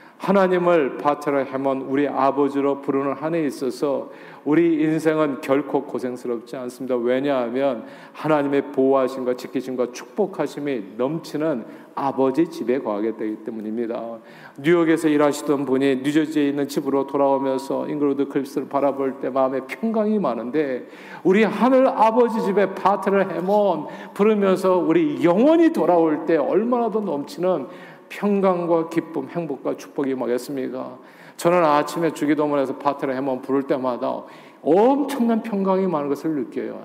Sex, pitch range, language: male, 130-170 Hz, Korean